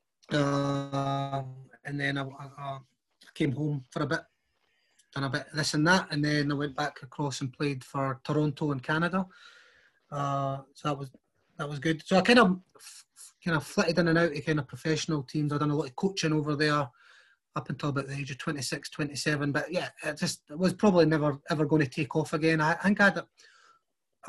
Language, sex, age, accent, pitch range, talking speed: English, male, 30-49, British, 140-160 Hz, 220 wpm